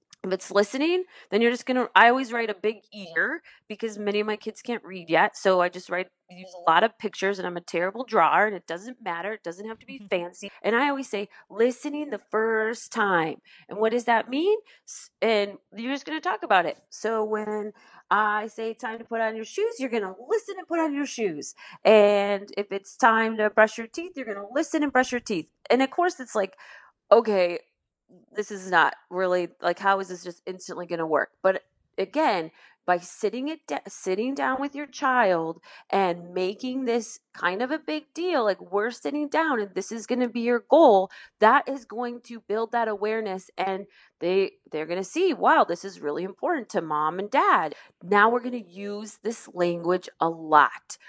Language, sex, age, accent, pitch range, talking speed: English, female, 30-49, American, 190-260 Hz, 215 wpm